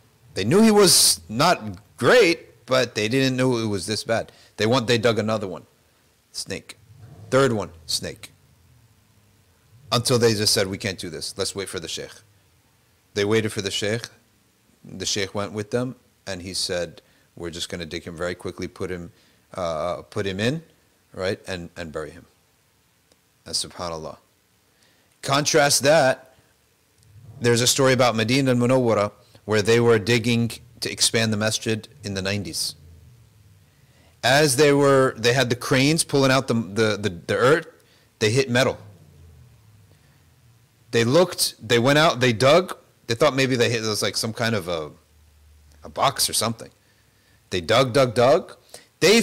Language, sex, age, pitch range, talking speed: English, male, 40-59, 105-130 Hz, 165 wpm